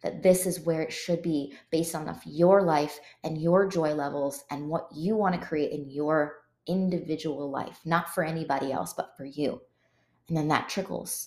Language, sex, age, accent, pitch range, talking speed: English, female, 20-39, American, 155-190 Hz, 190 wpm